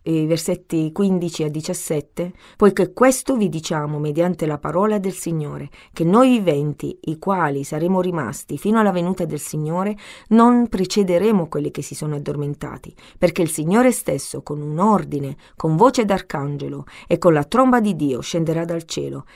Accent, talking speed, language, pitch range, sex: native, 160 wpm, Italian, 155-205 Hz, female